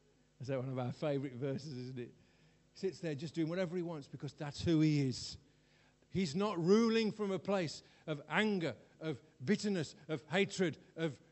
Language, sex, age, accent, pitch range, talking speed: English, male, 50-69, British, 115-165 Hz, 185 wpm